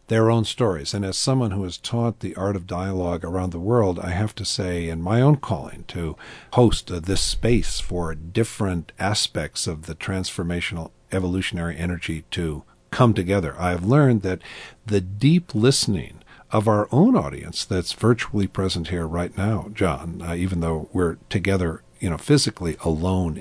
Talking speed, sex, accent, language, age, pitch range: 170 wpm, male, American, English, 50-69, 85-110 Hz